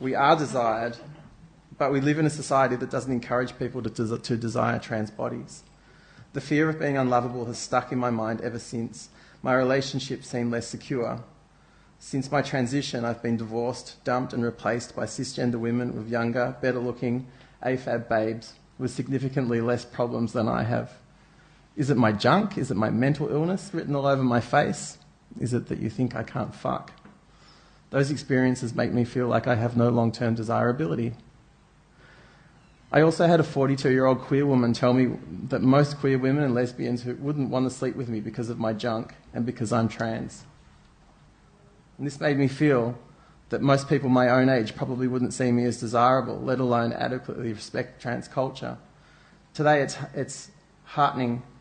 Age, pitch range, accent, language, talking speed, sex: 30-49, 120-135 Hz, Australian, English, 170 wpm, male